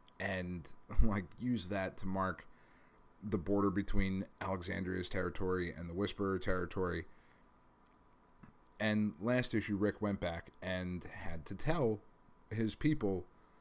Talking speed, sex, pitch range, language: 120 wpm, male, 90-105 Hz, English